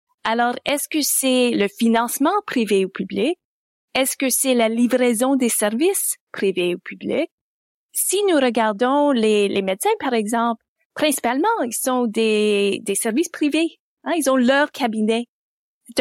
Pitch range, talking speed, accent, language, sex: 225-300 Hz, 150 wpm, Canadian, French, female